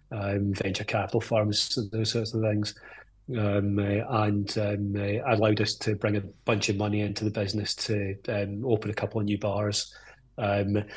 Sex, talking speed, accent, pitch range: male, 175 wpm, British, 105-120 Hz